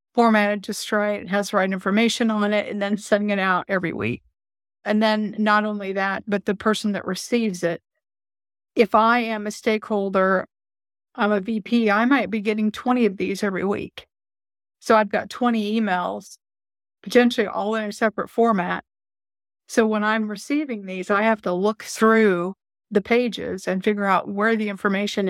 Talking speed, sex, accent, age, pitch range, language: 175 wpm, female, American, 40-59, 195-220 Hz, English